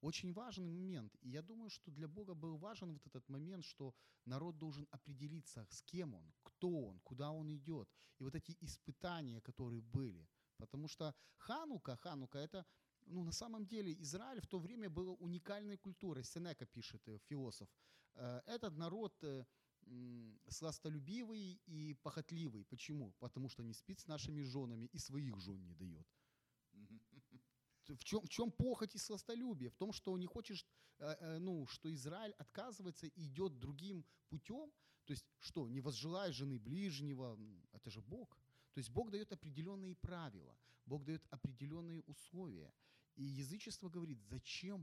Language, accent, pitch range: Ukrainian, native, 130-180 Hz